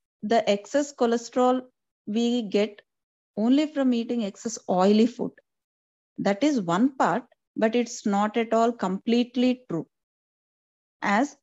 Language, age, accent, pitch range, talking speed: English, 30-49, Indian, 190-255 Hz, 120 wpm